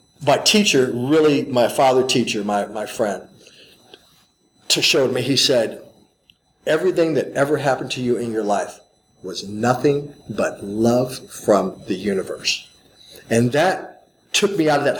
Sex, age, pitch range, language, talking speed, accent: male, 40-59, 125-155 Hz, English, 145 wpm, American